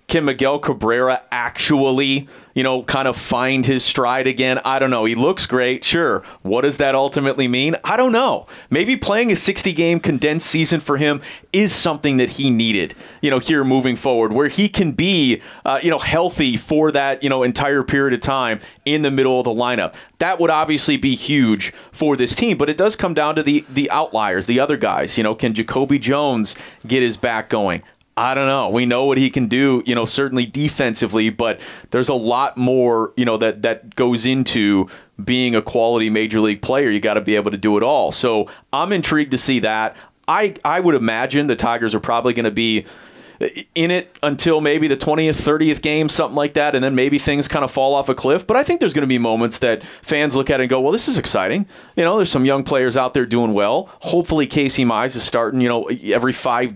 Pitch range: 120-150 Hz